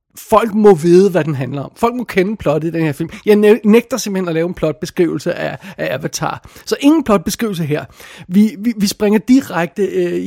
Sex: male